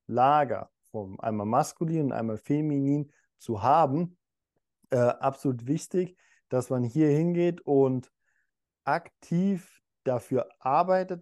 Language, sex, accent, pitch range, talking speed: German, male, German, 125-155 Hz, 105 wpm